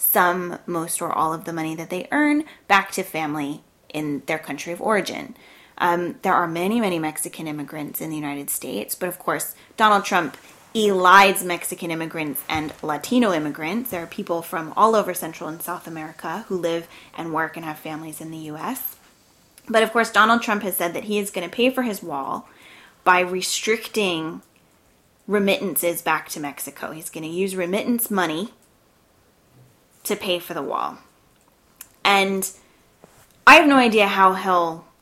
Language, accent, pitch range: English, American, 165-200 Hz